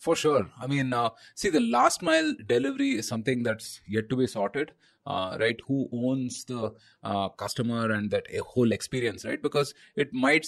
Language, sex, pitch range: English, male, 110-135 Hz